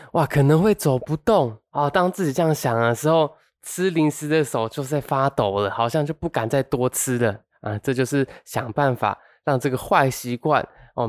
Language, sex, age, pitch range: Chinese, male, 20-39, 115-150 Hz